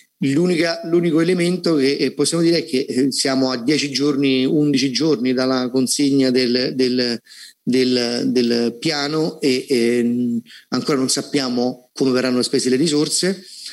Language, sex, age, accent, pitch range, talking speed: Italian, male, 30-49, native, 125-150 Hz, 135 wpm